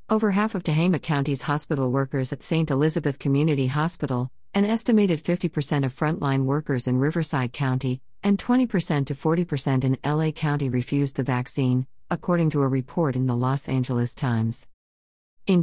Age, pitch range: 50-69, 135-160 Hz